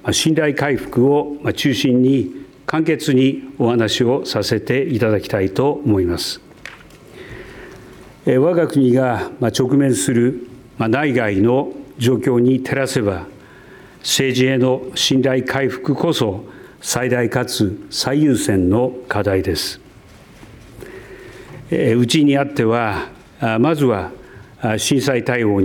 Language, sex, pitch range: Japanese, male, 115-135 Hz